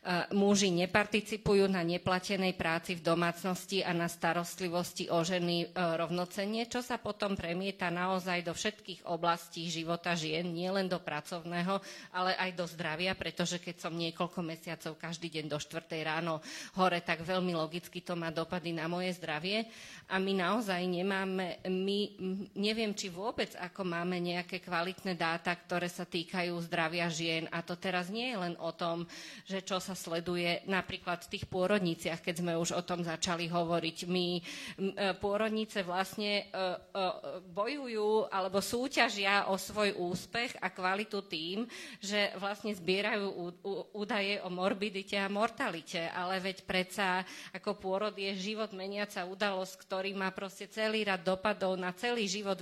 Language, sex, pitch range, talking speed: Slovak, female, 175-200 Hz, 150 wpm